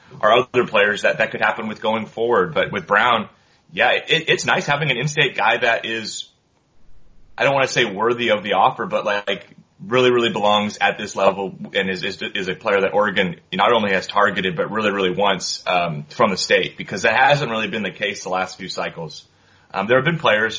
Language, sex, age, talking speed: English, male, 30-49, 220 wpm